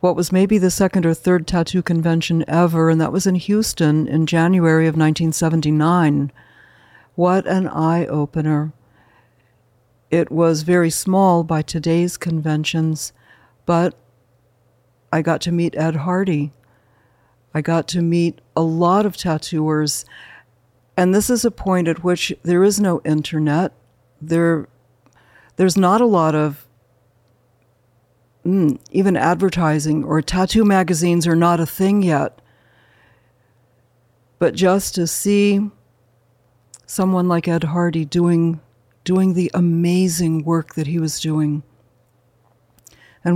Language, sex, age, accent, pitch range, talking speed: English, female, 60-79, American, 125-180 Hz, 125 wpm